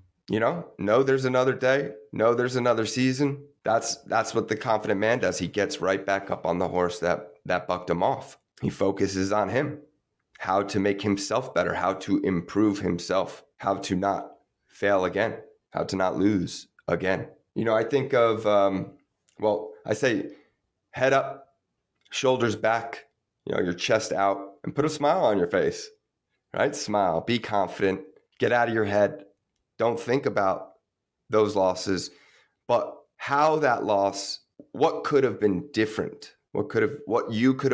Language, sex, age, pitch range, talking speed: English, male, 30-49, 100-130 Hz, 170 wpm